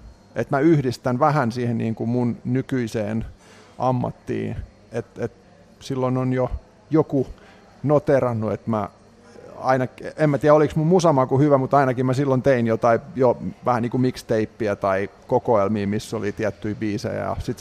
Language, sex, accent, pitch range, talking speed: English, male, Finnish, 110-135 Hz, 155 wpm